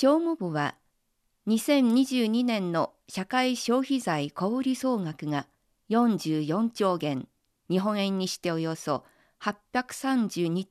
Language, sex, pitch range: Japanese, female, 165-235 Hz